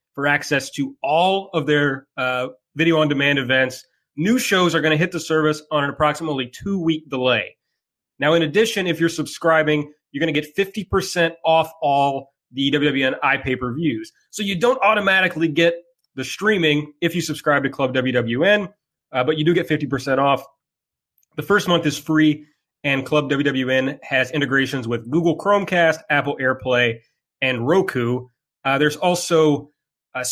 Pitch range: 130-160 Hz